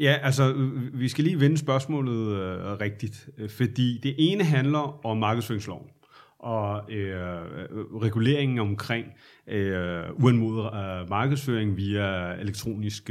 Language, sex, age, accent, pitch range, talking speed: Danish, male, 30-49, native, 110-145 Hz, 110 wpm